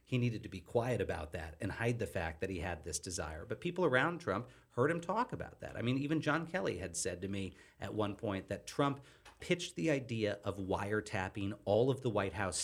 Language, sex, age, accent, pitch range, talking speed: English, male, 40-59, American, 100-125 Hz, 235 wpm